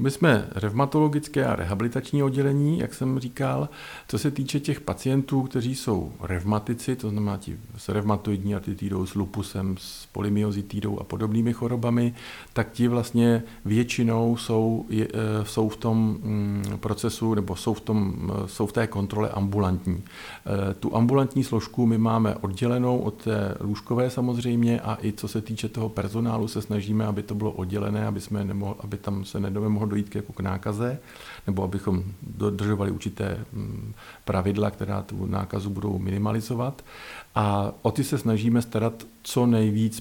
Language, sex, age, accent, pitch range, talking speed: Czech, male, 50-69, native, 100-115 Hz, 155 wpm